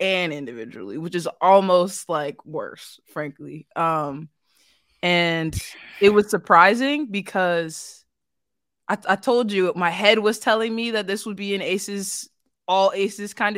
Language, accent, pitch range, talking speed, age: English, American, 170-230 Hz, 145 wpm, 20-39